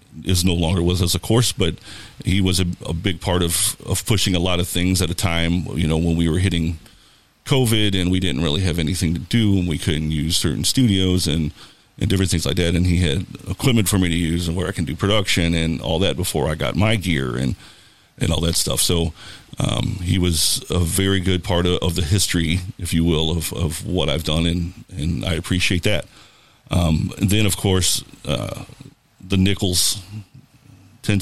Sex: male